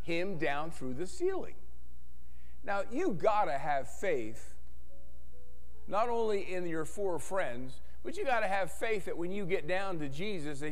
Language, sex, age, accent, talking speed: English, male, 50-69, American, 160 wpm